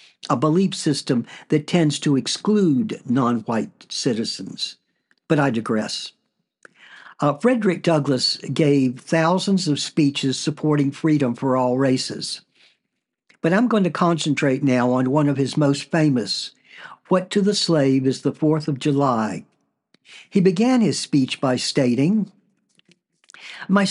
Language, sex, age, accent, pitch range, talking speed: English, male, 60-79, American, 140-190 Hz, 135 wpm